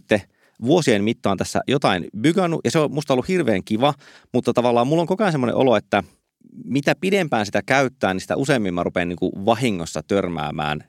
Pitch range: 85-120 Hz